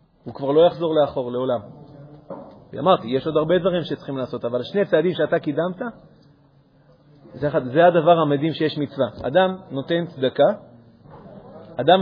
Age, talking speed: 30-49, 130 wpm